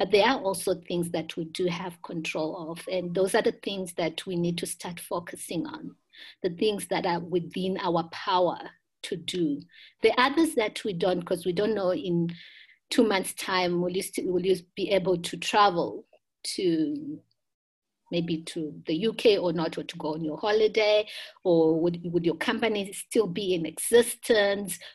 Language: English